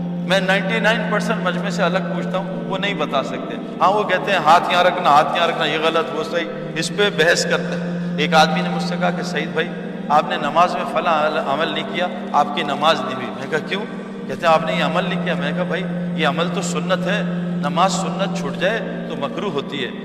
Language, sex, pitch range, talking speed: Urdu, male, 175-205 Hz, 240 wpm